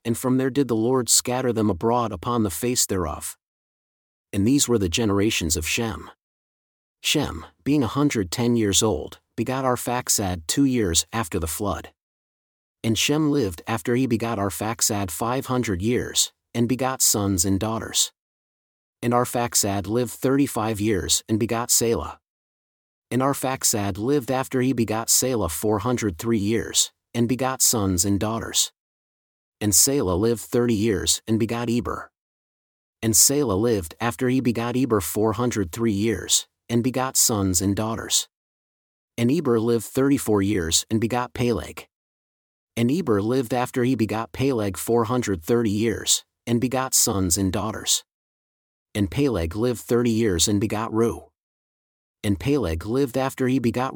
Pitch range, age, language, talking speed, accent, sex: 100-125 Hz, 40-59, English, 150 wpm, American, male